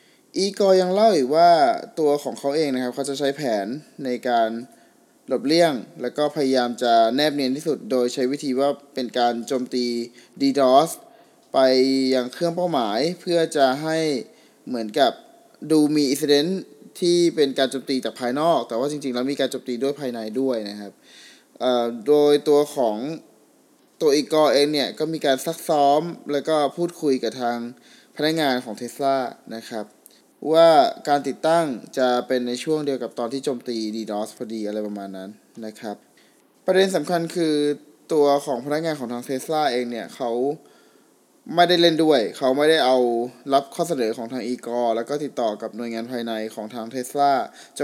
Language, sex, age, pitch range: Thai, male, 20-39, 120-150 Hz